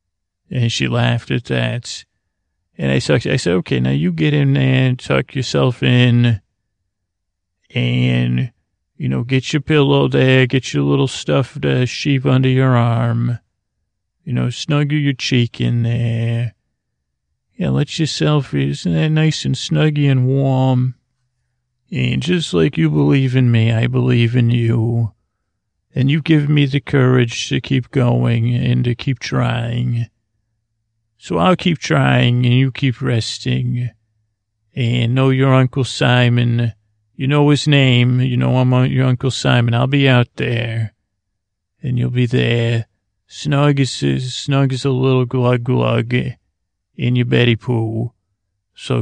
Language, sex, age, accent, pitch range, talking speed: English, male, 40-59, American, 110-130 Hz, 150 wpm